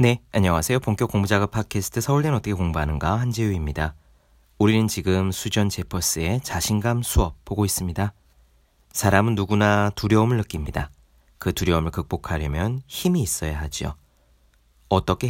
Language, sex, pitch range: Korean, male, 75-120 Hz